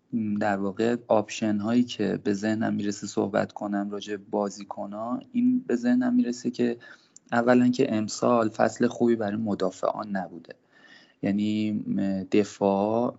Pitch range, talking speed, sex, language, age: 100-115 Hz, 135 wpm, male, Persian, 20-39